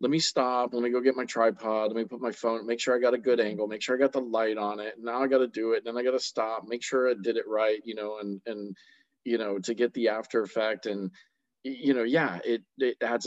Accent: American